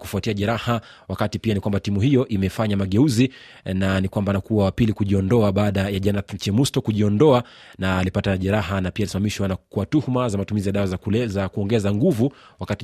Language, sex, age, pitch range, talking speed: Swahili, male, 30-49, 100-120 Hz, 180 wpm